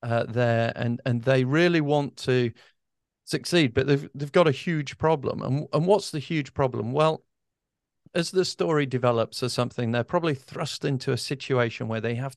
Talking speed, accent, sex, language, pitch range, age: 185 wpm, British, male, English, 120-150 Hz, 40-59